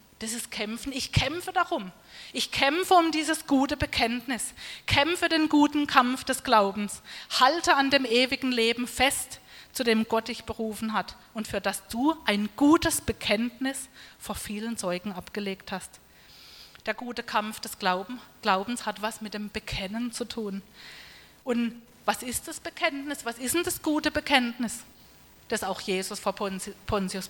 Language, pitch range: German, 210-275 Hz